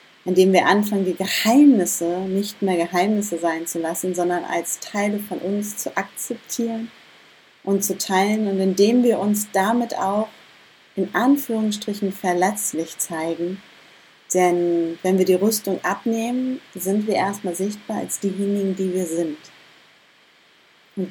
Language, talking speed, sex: German, 135 wpm, female